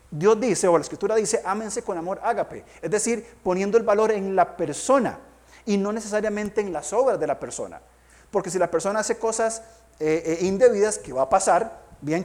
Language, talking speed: Spanish, 200 wpm